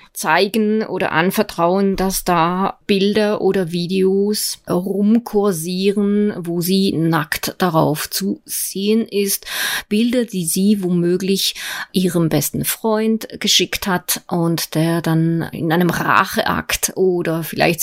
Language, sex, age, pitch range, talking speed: German, female, 30-49, 170-205 Hz, 110 wpm